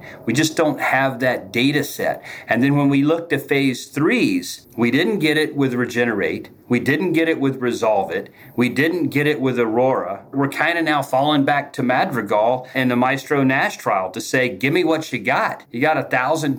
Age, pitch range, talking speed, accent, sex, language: 40-59, 130-150 Hz, 205 wpm, American, male, English